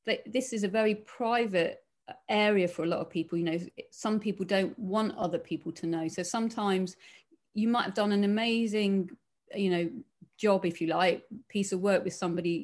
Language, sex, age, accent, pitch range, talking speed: English, female, 30-49, British, 185-220 Hz, 195 wpm